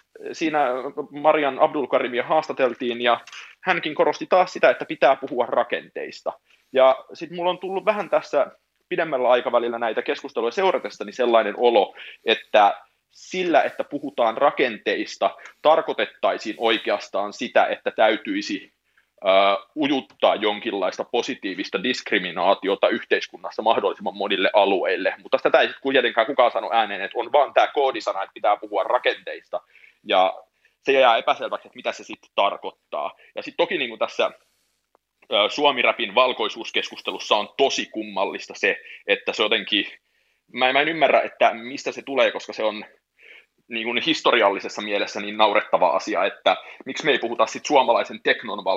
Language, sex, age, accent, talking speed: Finnish, male, 30-49, native, 135 wpm